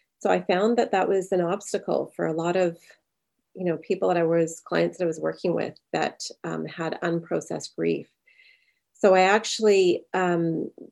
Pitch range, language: 165-195 Hz, English